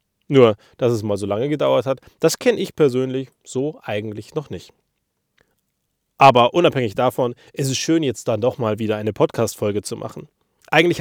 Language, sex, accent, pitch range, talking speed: German, male, German, 115-155 Hz, 175 wpm